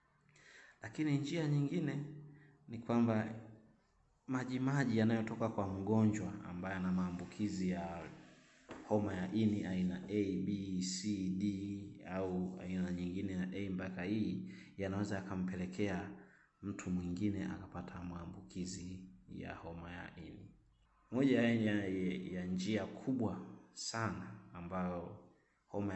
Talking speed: 110 wpm